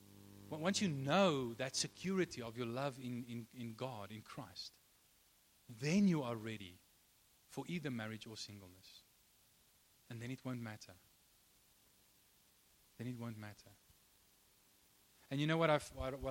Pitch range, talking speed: 100-145 Hz, 130 wpm